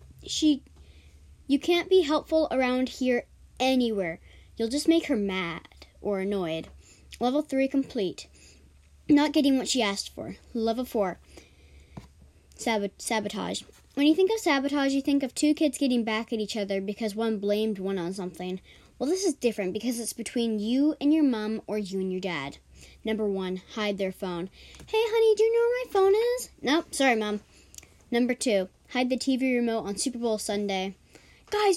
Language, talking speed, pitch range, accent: English, 175 wpm, 205-295 Hz, American